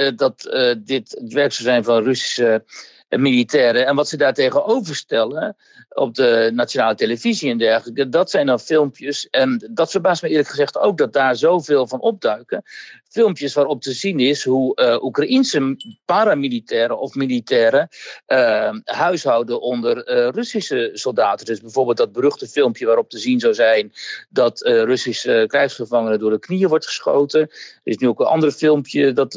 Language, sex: Dutch, male